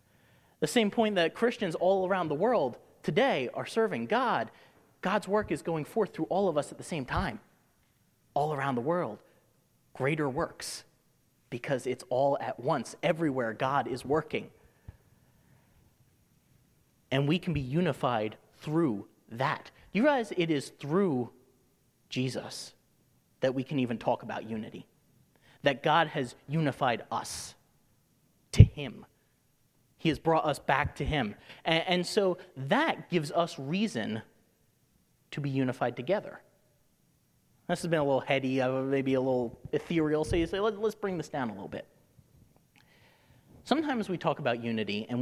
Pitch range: 125-175 Hz